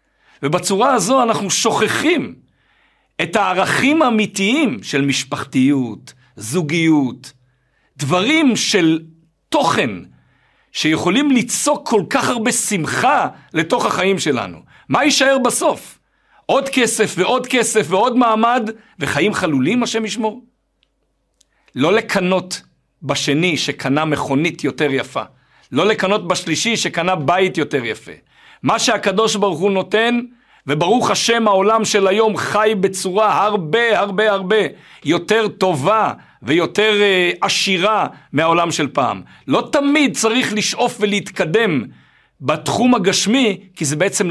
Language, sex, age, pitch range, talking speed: Hebrew, male, 50-69, 150-220 Hz, 110 wpm